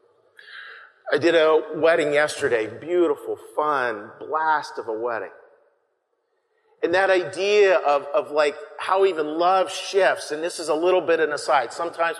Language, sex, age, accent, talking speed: English, male, 40-59, American, 150 wpm